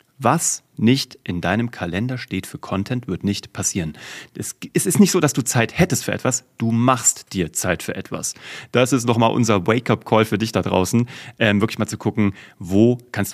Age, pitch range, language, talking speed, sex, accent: 30-49, 100-130 Hz, German, 190 wpm, male, German